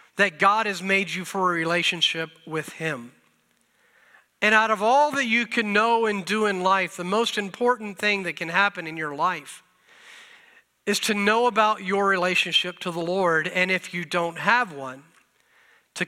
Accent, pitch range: American, 170-215 Hz